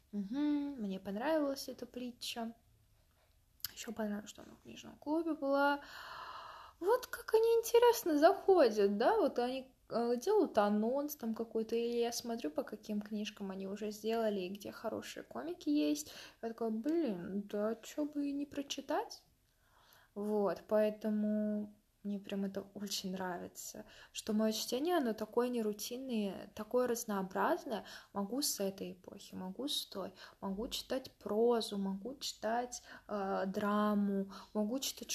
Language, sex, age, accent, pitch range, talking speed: Russian, female, 20-39, native, 200-250 Hz, 135 wpm